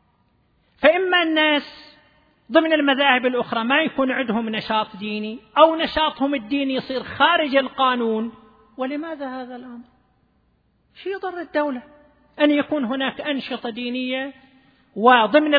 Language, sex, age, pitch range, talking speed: Arabic, male, 40-59, 255-320 Hz, 110 wpm